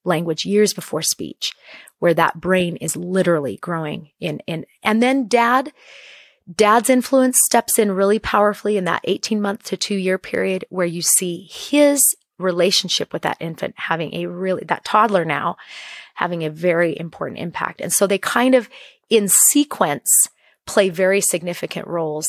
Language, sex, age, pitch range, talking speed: English, female, 30-49, 170-220 Hz, 160 wpm